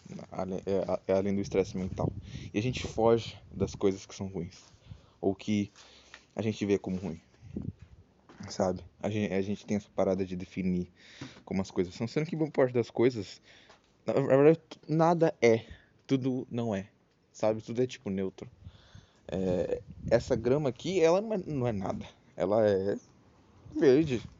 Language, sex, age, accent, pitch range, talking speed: Portuguese, male, 20-39, Brazilian, 95-120 Hz, 155 wpm